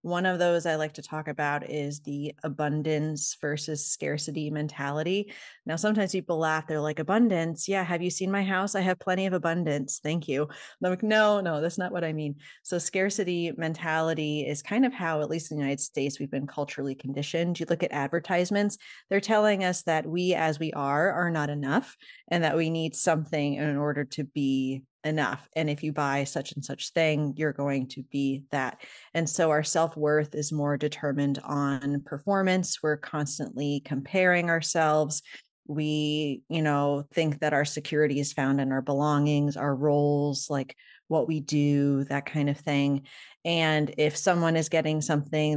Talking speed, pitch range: 185 wpm, 145-170 Hz